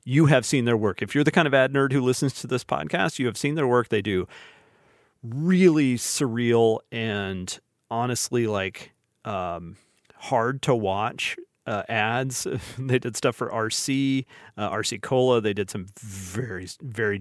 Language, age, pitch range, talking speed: English, 30-49, 100-130 Hz, 165 wpm